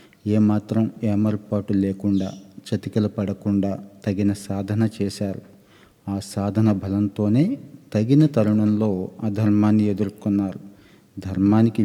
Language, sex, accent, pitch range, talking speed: Telugu, male, native, 100-110 Hz, 85 wpm